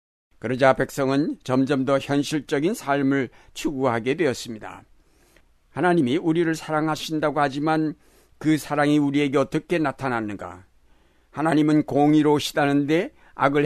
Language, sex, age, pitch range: Korean, male, 60-79, 115-155 Hz